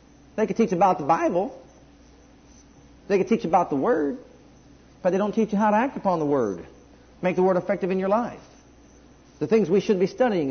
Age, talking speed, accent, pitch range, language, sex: 50-69, 205 wpm, American, 175-275 Hz, English, male